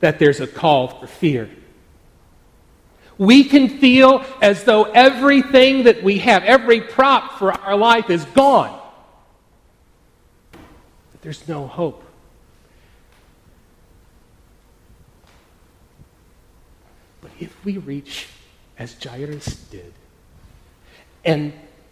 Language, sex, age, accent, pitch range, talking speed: English, male, 40-59, American, 135-205 Hz, 95 wpm